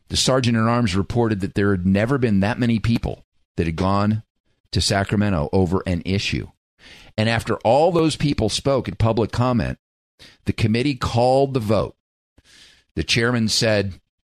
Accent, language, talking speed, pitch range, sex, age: American, English, 150 wpm, 85-110 Hz, male, 50-69